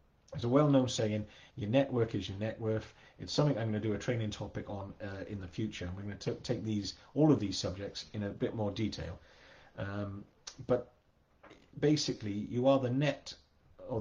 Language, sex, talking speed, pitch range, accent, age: English, male, 195 wpm, 100-135 Hz, British, 40-59